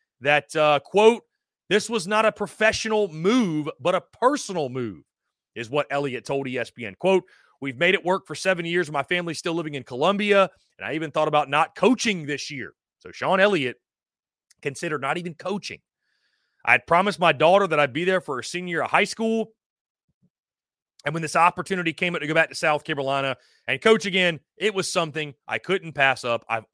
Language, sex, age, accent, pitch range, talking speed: English, male, 30-49, American, 145-195 Hz, 195 wpm